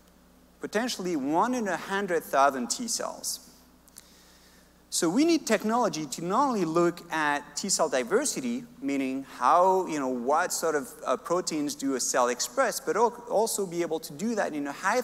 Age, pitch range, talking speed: 30-49, 135-215 Hz, 165 wpm